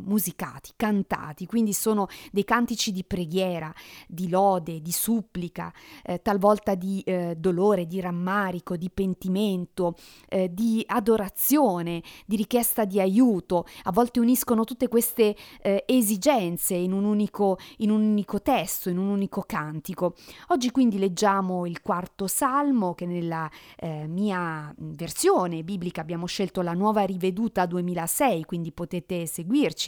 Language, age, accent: Italian, 30-49, native